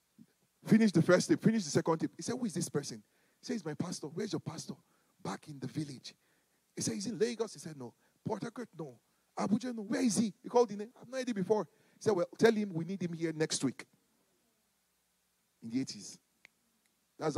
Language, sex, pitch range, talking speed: English, male, 130-210 Hz, 225 wpm